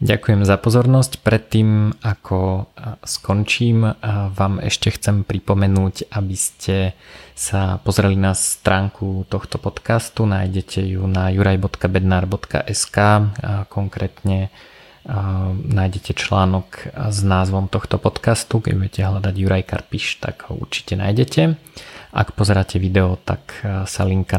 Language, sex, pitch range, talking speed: Slovak, male, 95-110 Hz, 110 wpm